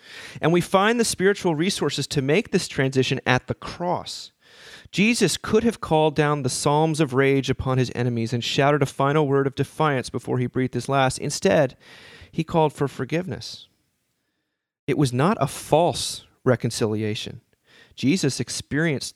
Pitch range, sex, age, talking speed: 125-165 Hz, male, 30-49, 155 wpm